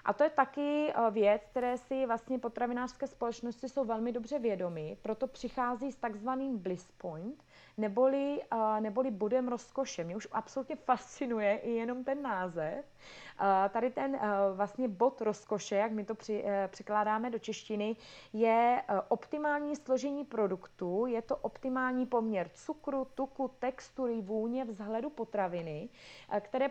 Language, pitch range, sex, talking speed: Czech, 210-260 Hz, female, 130 wpm